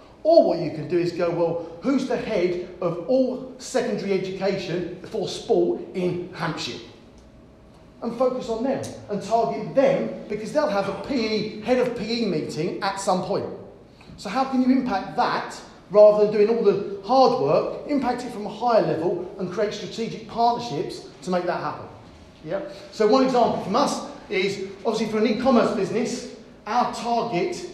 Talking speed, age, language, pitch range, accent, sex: 170 wpm, 40-59, English, 180-235 Hz, British, male